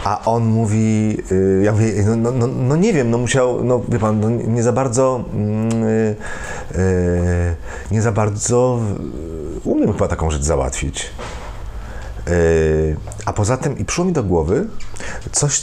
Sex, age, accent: male, 40-59, native